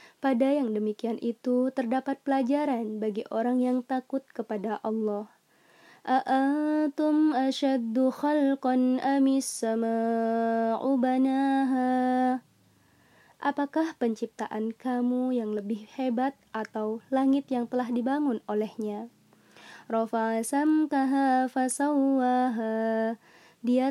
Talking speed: 65 wpm